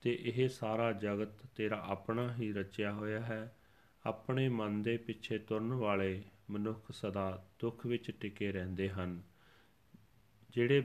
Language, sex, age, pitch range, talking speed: Punjabi, male, 40-59, 100-115 Hz, 135 wpm